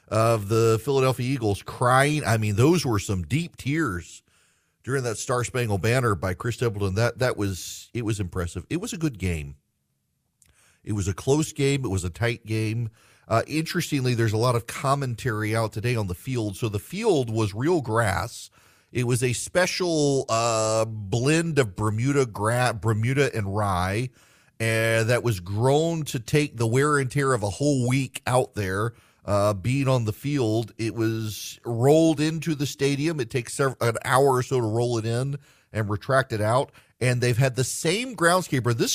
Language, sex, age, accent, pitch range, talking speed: English, male, 40-59, American, 110-150 Hz, 185 wpm